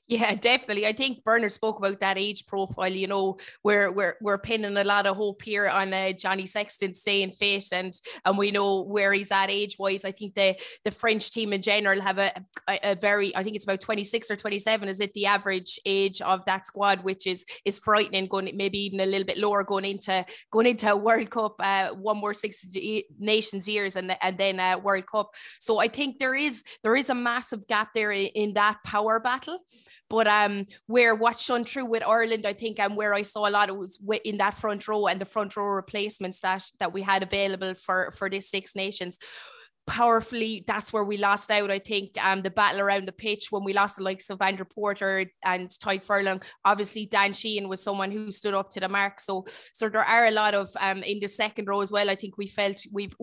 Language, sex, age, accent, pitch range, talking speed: English, female, 20-39, Irish, 195-215 Hz, 230 wpm